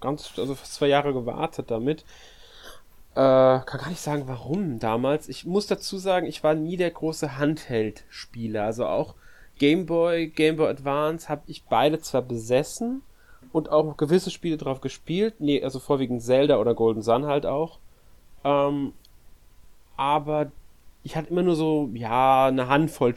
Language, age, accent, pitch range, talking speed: German, 30-49, German, 130-155 Hz, 160 wpm